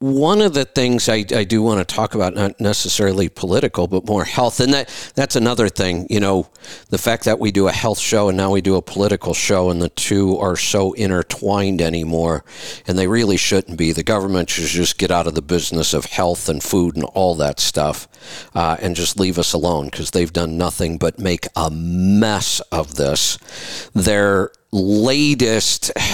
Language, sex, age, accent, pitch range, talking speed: English, male, 50-69, American, 90-120 Hz, 195 wpm